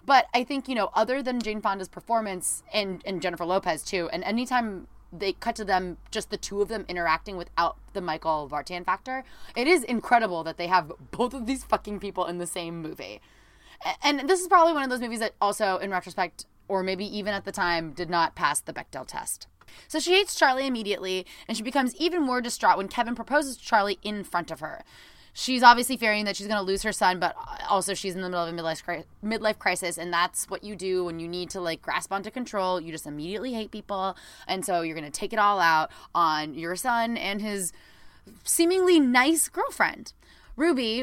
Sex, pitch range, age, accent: female, 180-245 Hz, 20-39, American